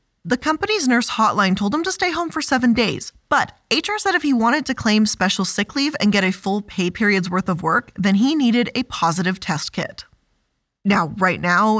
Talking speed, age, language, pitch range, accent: 215 wpm, 20-39, English, 180-235 Hz, American